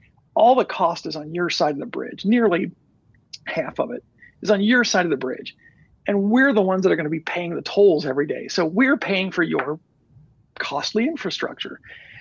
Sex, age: male, 50-69